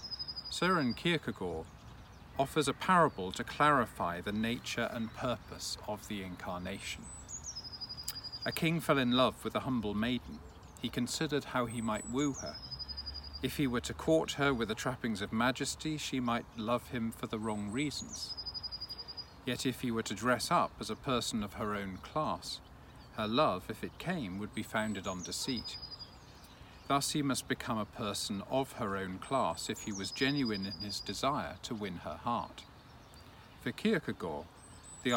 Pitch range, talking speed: 95-130 Hz, 165 wpm